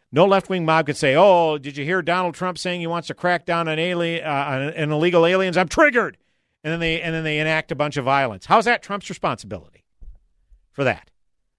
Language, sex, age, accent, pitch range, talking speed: English, male, 50-69, American, 140-180 Hz, 230 wpm